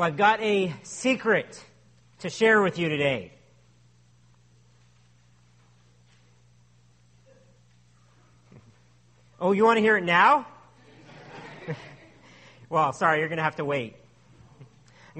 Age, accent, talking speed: 40-59, American, 105 wpm